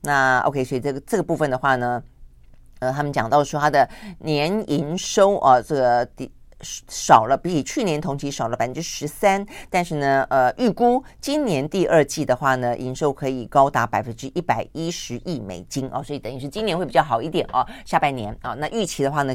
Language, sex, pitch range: Chinese, female, 130-165 Hz